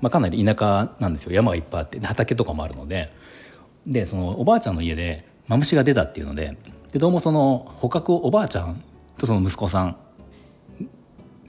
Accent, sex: native, male